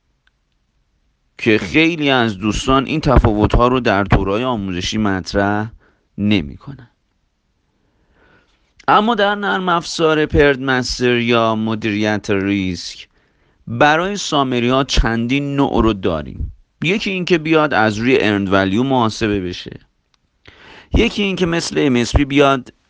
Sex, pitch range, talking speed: male, 105-145 Hz, 105 wpm